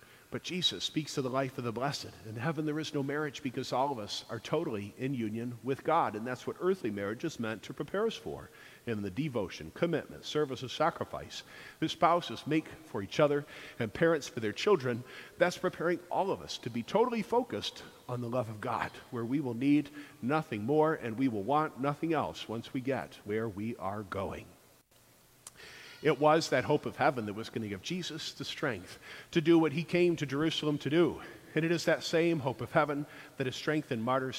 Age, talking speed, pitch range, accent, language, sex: 50-69, 215 wpm, 125-160 Hz, American, English, male